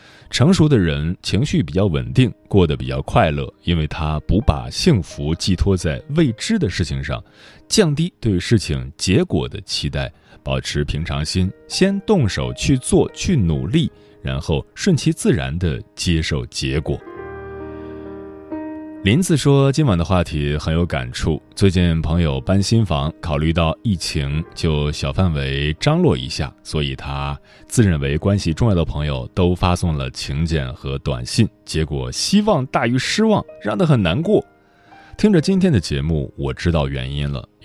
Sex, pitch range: male, 75-105 Hz